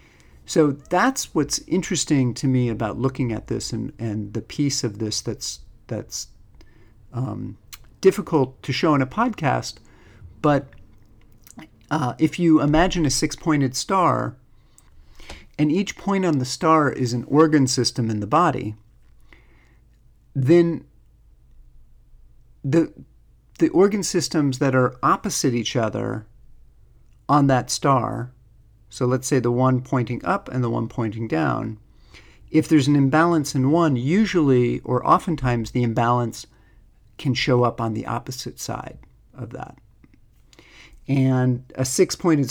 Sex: male